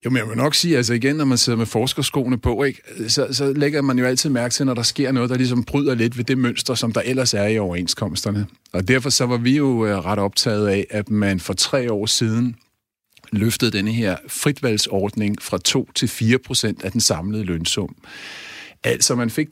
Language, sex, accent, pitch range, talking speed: Danish, male, native, 110-135 Hz, 220 wpm